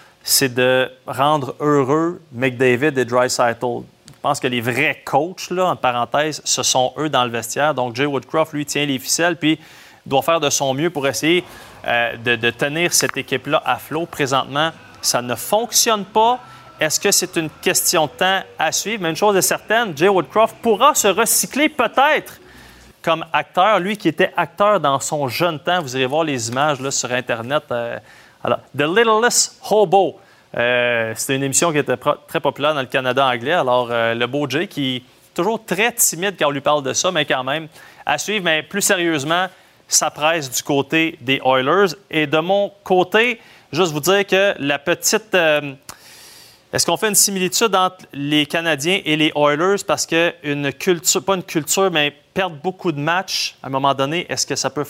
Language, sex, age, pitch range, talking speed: French, male, 30-49, 135-185 Hz, 195 wpm